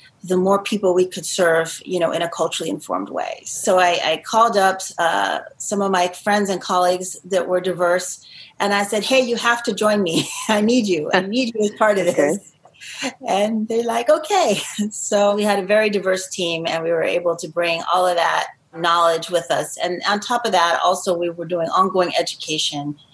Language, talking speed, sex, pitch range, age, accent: English, 210 wpm, female, 175-225 Hz, 30-49, American